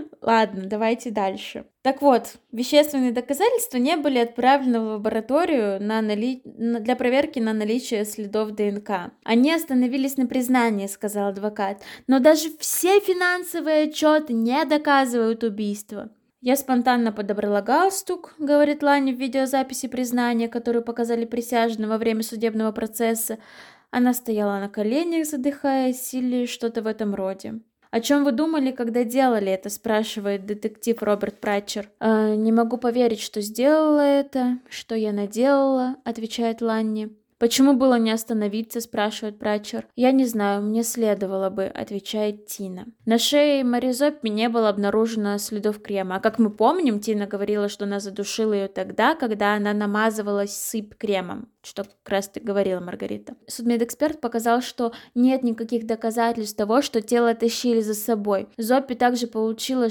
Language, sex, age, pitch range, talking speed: Russian, female, 20-39, 215-255 Hz, 145 wpm